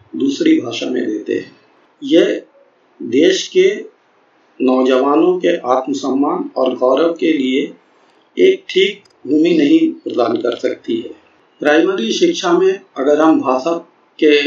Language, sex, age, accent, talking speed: Hindi, male, 50-69, native, 125 wpm